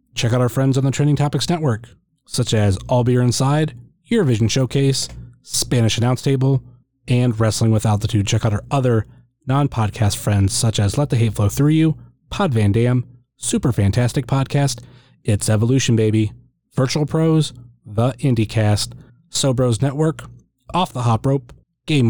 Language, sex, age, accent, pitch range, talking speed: English, male, 30-49, American, 115-140 Hz, 160 wpm